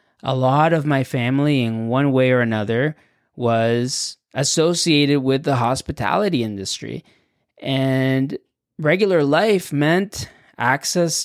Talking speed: 110 wpm